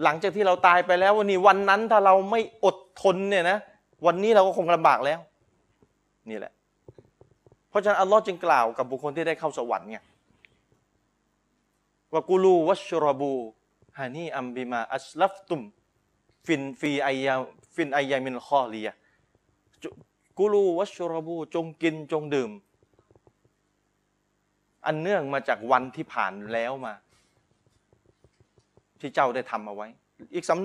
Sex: male